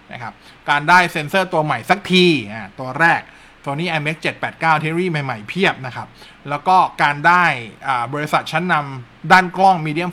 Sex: male